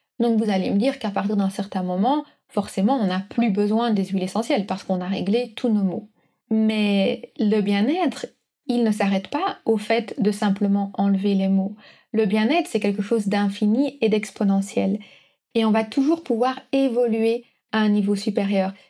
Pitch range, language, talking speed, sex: 205-235 Hz, French, 180 wpm, female